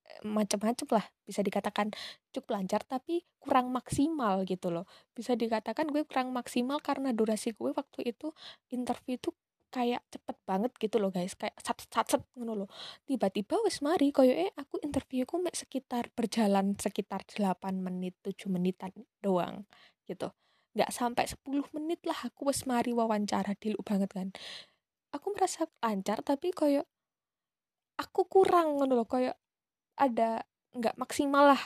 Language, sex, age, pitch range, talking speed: Indonesian, female, 20-39, 210-270 Hz, 140 wpm